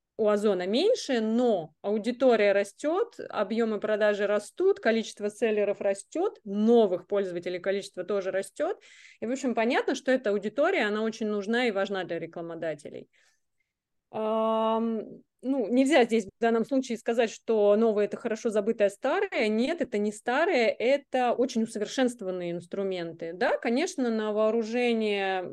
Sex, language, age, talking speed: female, Russian, 20-39, 135 wpm